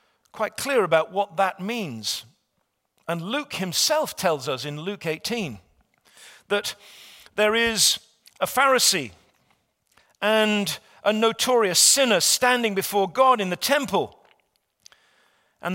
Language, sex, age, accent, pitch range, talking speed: English, male, 50-69, British, 145-235 Hz, 115 wpm